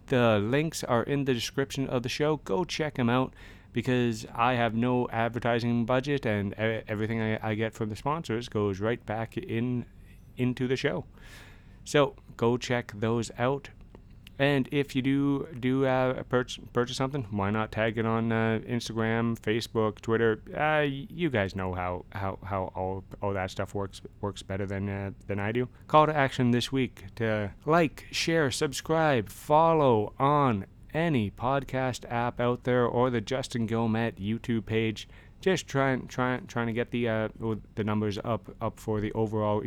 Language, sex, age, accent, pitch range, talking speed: English, male, 30-49, American, 105-130 Hz, 175 wpm